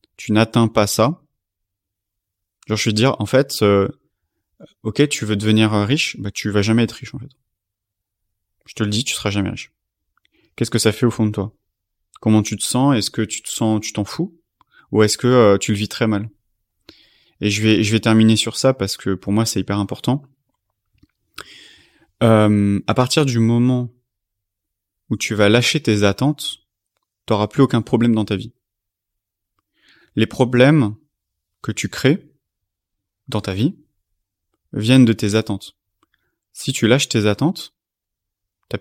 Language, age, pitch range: French, 30-49, 100-125 Hz